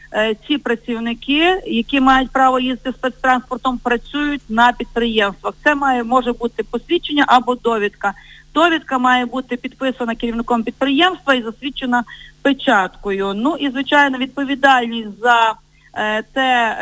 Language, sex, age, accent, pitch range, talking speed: Ukrainian, female, 40-59, native, 230-270 Hz, 115 wpm